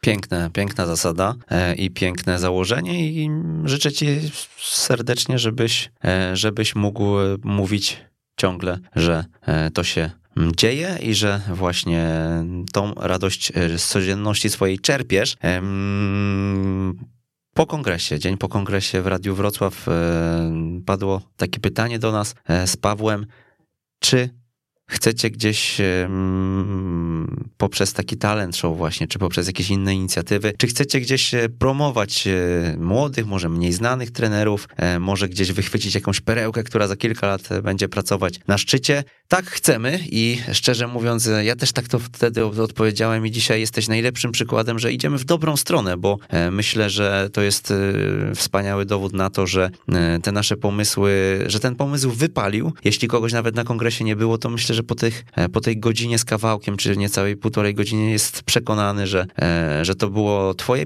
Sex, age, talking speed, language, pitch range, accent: male, 20-39, 140 wpm, Polish, 95-120 Hz, native